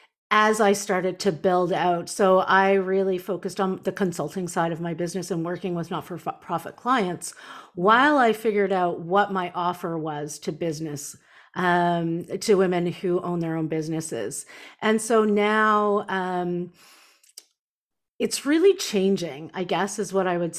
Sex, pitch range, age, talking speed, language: female, 175-215 Hz, 40-59, 155 wpm, English